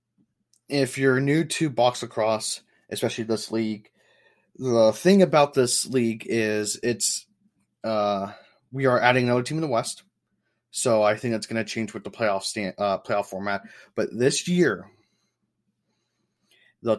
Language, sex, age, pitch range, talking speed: English, male, 30-49, 110-140 Hz, 150 wpm